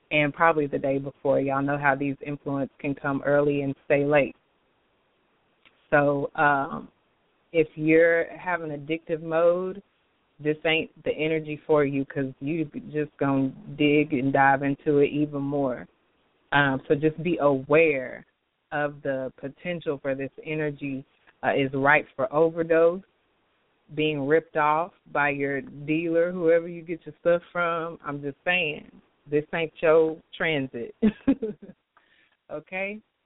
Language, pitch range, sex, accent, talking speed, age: English, 145-170 Hz, female, American, 140 wpm, 30-49